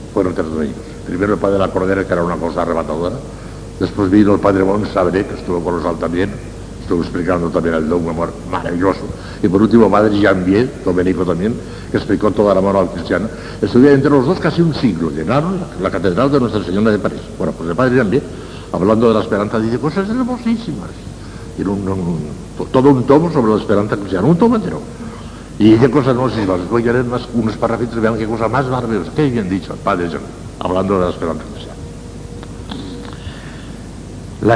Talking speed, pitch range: 200 wpm, 95-130 Hz